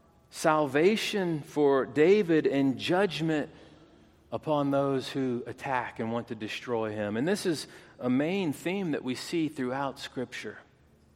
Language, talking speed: English, 135 wpm